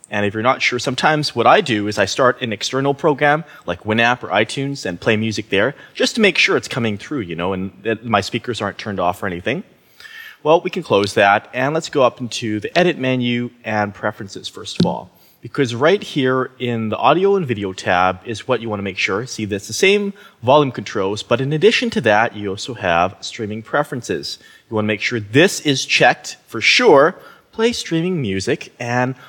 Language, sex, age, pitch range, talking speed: English, male, 30-49, 105-145 Hz, 215 wpm